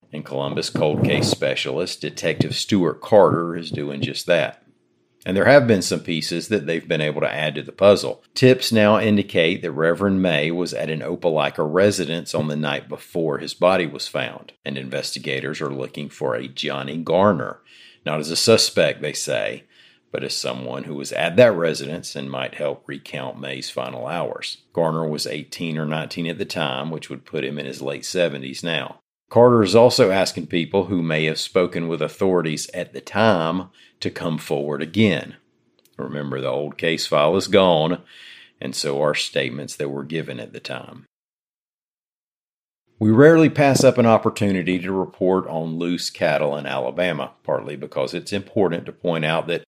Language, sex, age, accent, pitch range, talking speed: English, male, 50-69, American, 70-95 Hz, 180 wpm